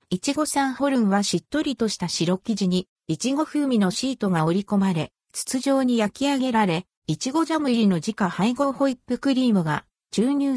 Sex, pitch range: female, 175-260 Hz